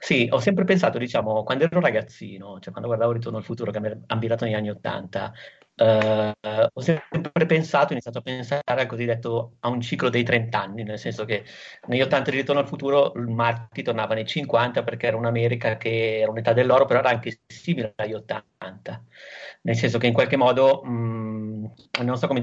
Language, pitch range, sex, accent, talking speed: Italian, 110-130 Hz, male, native, 195 wpm